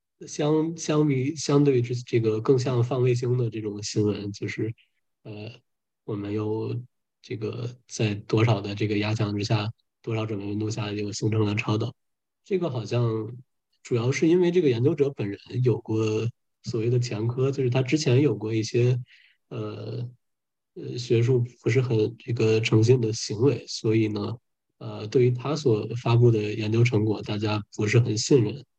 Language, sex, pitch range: English, male, 110-125 Hz